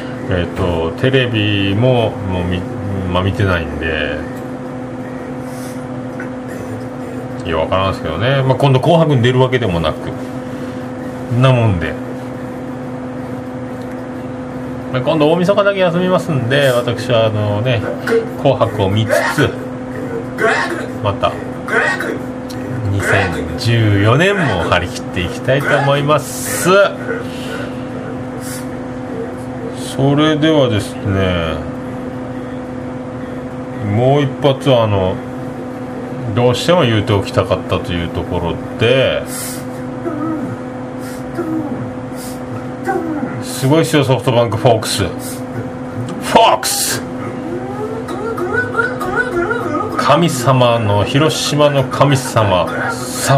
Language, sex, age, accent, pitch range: Japanese, male, 40-59, native, 115-130 Hz